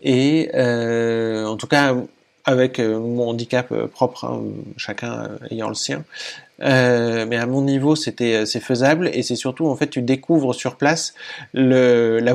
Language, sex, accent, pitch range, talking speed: French, male, French, 120-145 Hz, 180 wpm